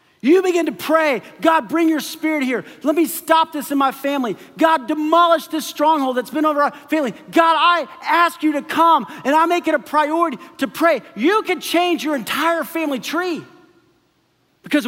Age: 40-59